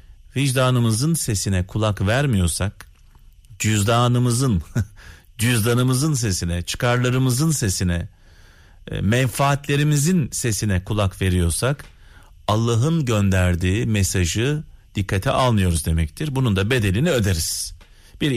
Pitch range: 90-135 Hz